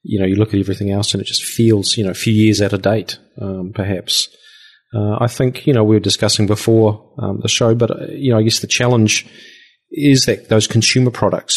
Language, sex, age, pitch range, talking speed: English, male, 30-49, 105-120 Hz, 235 wpm